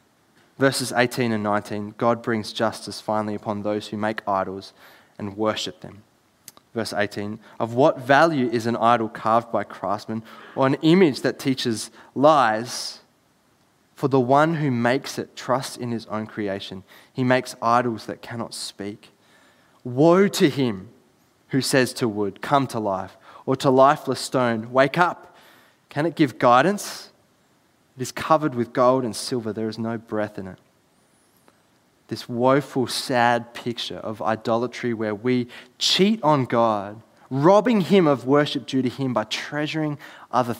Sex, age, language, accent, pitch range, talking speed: male, 20-39, English, Australian, 110-135 Hz, 155 wpm